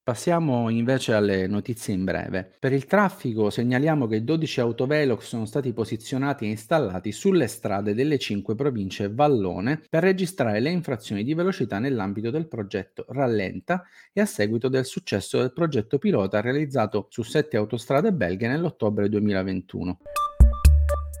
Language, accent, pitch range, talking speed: Italian, native, 105-155 Hz, 140 wpm